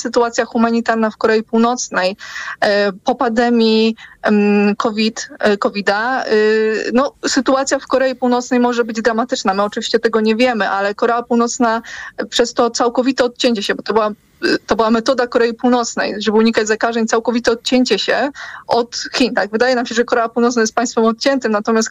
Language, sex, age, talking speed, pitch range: Polish, female, 20-39, 155 wpm, 225-255 Hz